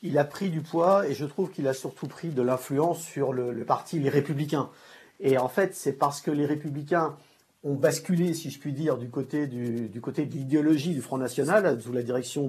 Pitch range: 135-175 Hz